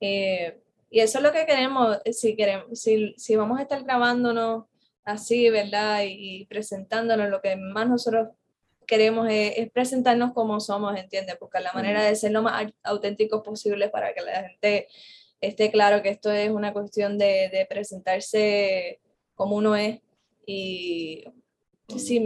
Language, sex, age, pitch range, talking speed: Spanish, female, 10-29, 205-235 Hz, 160 wpm